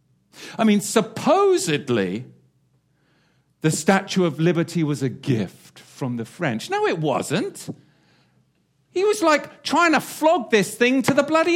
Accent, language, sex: British, English, male